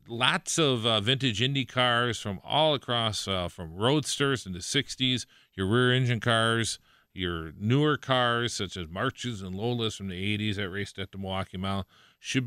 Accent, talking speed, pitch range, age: American, 175 wpm, 95-130 Hz, 40-59